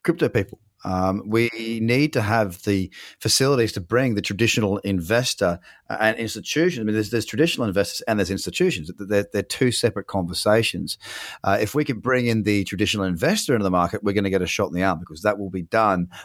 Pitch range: 95-120 Hz